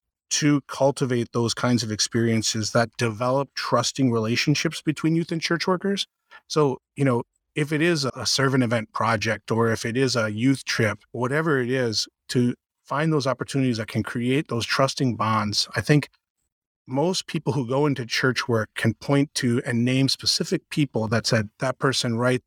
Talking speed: 180 wpm